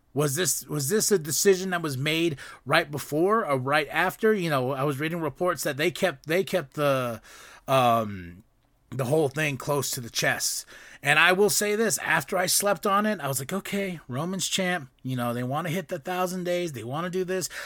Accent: American